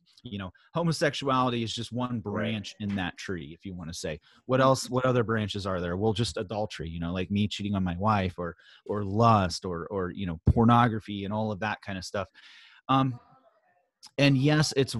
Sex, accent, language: male, American, English